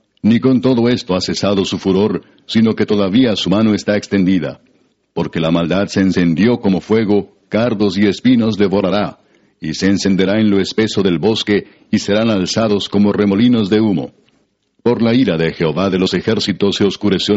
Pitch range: 95-110 Hz